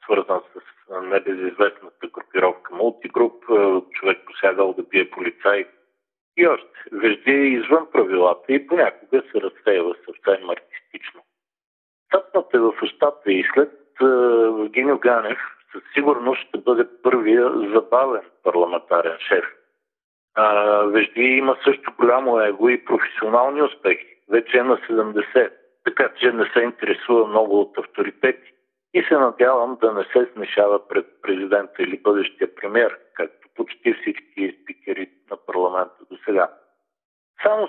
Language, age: Bulgarian, 60-79